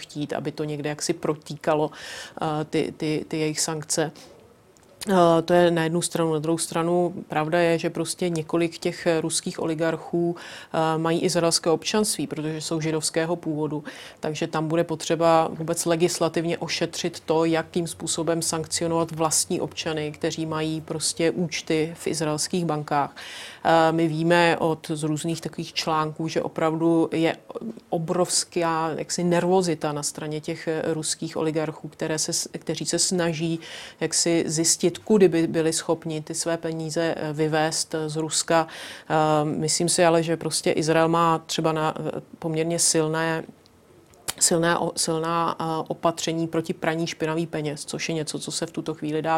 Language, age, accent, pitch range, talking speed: Czech, 30-49, native, 155-170 Hz, 135 wpm